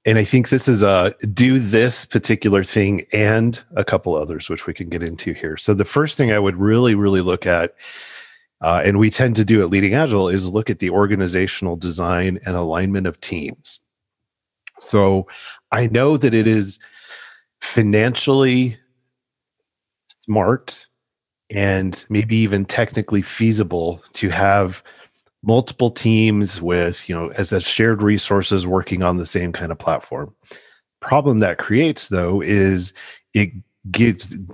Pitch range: 95-115 Hz